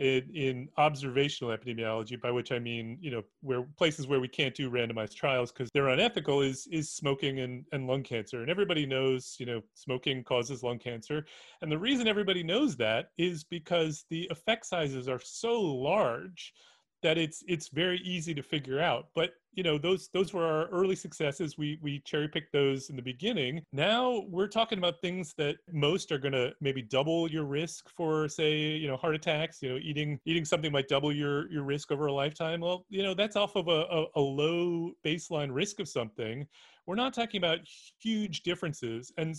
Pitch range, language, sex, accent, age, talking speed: 135-175 Hz, English, male, American, 30-49, 195 wpm